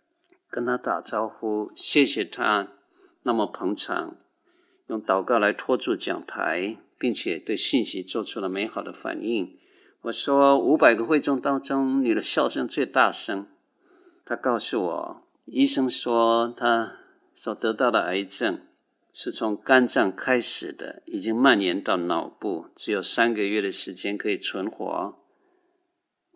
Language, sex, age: Chinese, male, 50-69